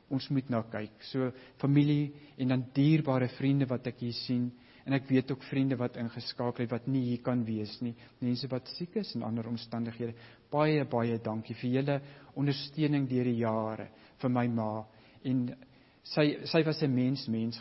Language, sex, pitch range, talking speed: English, male, 120-145 Hz, 185 wpm